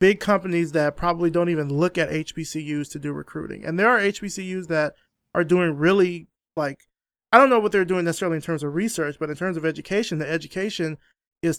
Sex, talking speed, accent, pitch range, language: male, 205 wpm, American, 155-185 Hz, English